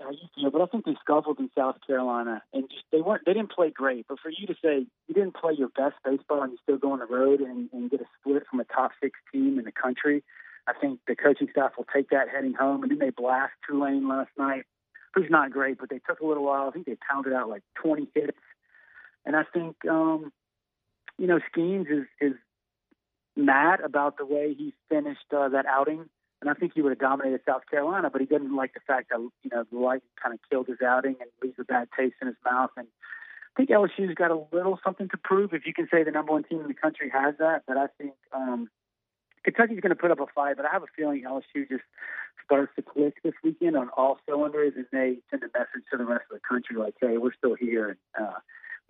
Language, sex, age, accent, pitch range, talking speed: English, male, 40-59, American, 130-165 Hz, 245 wpm